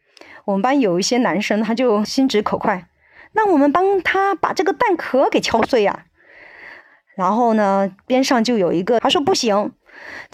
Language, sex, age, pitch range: Chinese, female, 30-49, 195-290 Hz